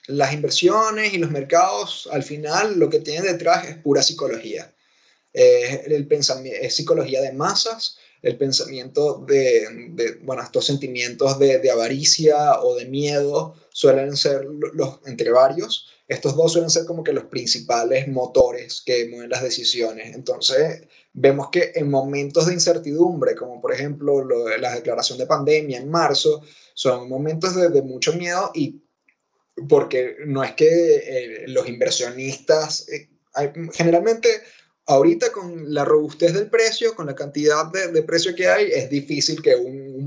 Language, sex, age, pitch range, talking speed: Spanish, male, 20-39, 135-230 Hz, 155 wpm